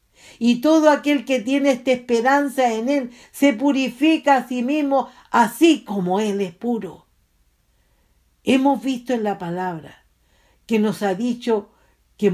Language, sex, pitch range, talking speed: English, female, 195-255 Hz, 140 wpm